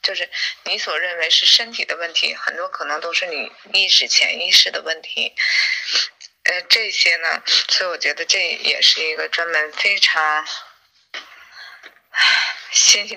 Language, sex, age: Chinese, female, 20-39